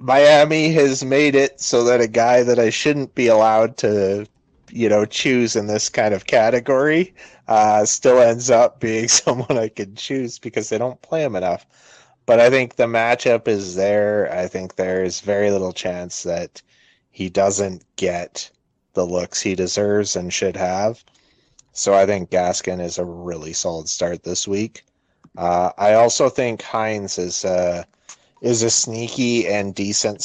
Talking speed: 170 wpm